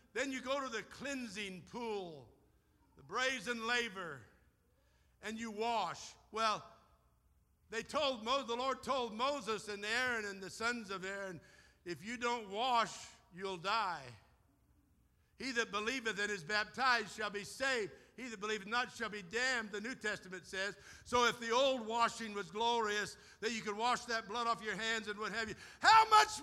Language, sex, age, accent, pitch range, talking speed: English, male, 60-79, American, 210-265 Hz, 175 wpm